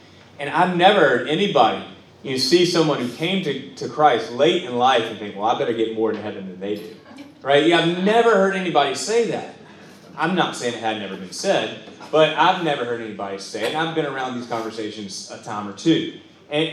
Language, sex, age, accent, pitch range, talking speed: English, male, 30-49, American, 115-170 Hz, 220 wpm